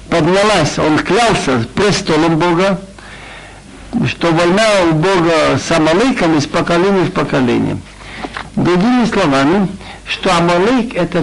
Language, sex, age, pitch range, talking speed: Russian, male, 60-79, 155-205 Hz, 100 wpm